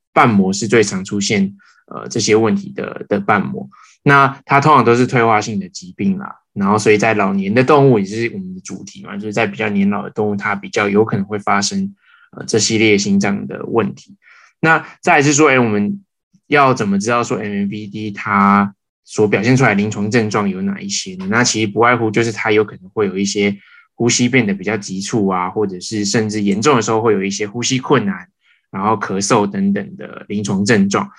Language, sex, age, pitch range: Chinese, male, 20-39, 105-145 Hz